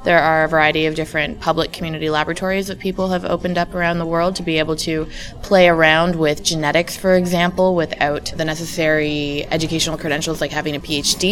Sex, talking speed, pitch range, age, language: female, 190 wpm, 155-185 Hz, 20-39, English